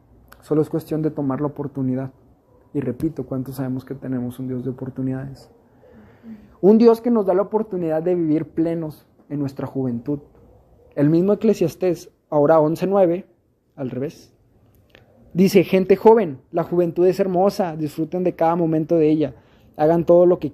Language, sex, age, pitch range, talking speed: Spanish, male, 20-39, 140-180 Hz, 160 wpm